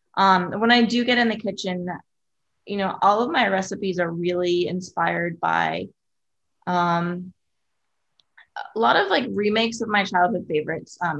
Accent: American